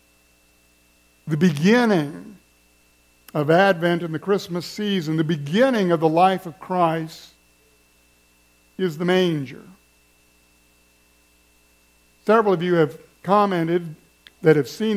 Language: English